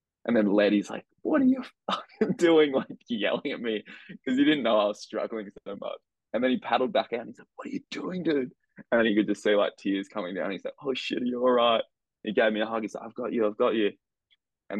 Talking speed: 275 wpm